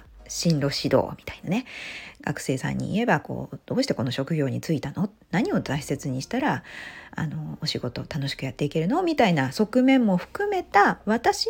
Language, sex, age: Japanese, female, 40-59